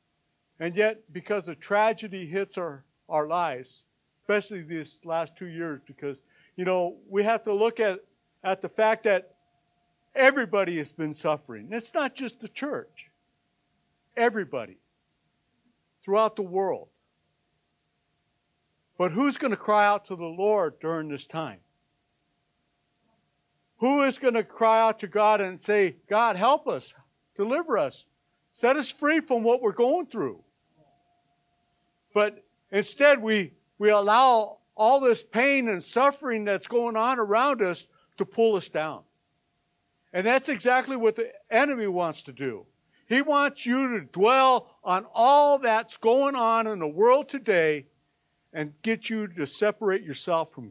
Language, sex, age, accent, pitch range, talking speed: English, male, 60-79, American, 175-240 Hz, 145 wpm